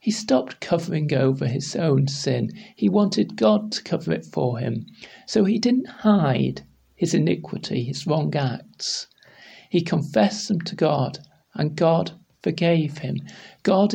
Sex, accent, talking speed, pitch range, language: male, British, 145 wpm, 145-195 Hz, English